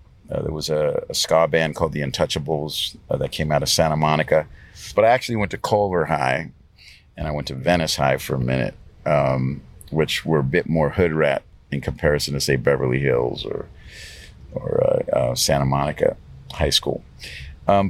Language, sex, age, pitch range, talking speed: English, male, 50-69, 75-95 Hz, 190 wpm